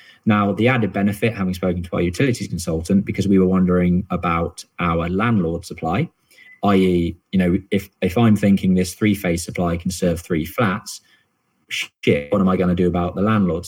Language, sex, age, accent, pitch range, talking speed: English, male, 20-39, British, 90-105 Hz, 185 wpm